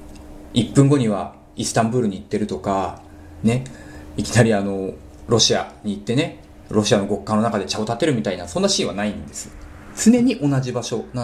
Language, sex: Japanese, male